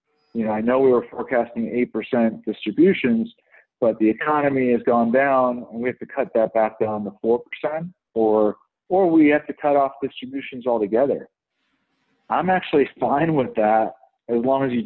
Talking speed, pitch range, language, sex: 180 wpm, 110-135 Hz, English, male